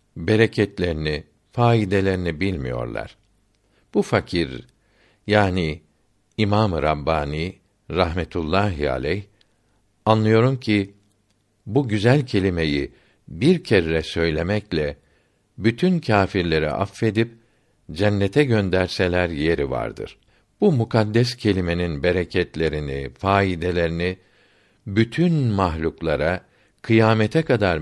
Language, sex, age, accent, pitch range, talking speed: Turkish, male, 60-79, native, 90-115 Hz, 70 wpm